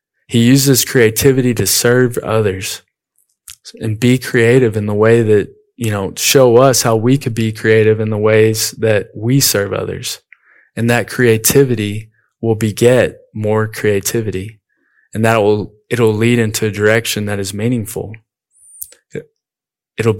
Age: 20-39